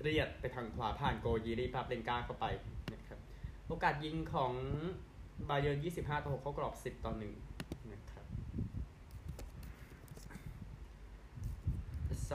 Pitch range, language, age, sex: 105-130 Hz, Thai, 20-39, male